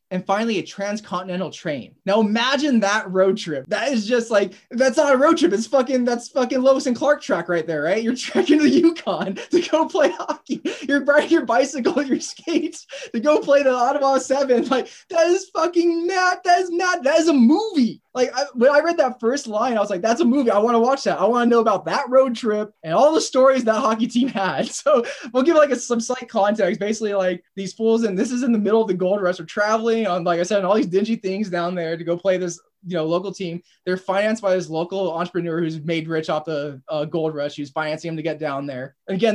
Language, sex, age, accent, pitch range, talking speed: English, male, 20-39, American, 175-250 Hz, 245 wpm